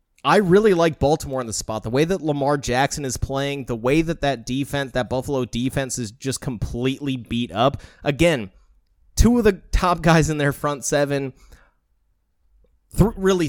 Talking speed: 170 wpm